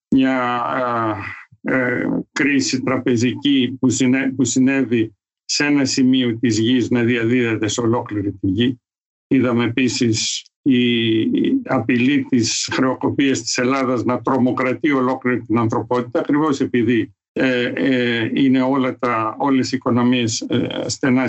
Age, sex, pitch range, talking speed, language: 50-69, male, 115-140 Hz, 105 wpm, Greek